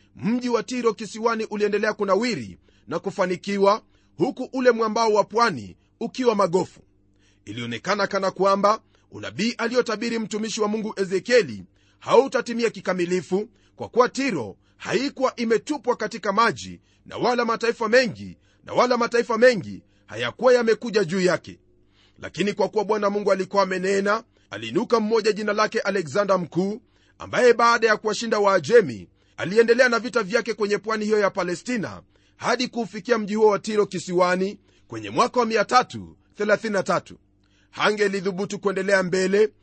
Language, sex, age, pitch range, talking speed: Swahili, male, 40-59, 185-230 Hz, 130 wpm